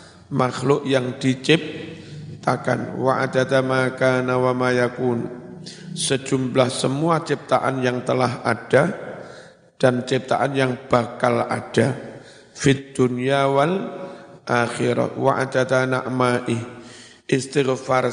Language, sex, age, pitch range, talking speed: Indonesian, male, 50-69, 125-135 Hz, 65 wpm